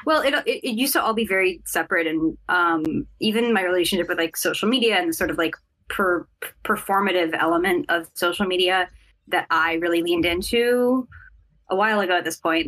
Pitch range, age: 165-200 Hz, 10-29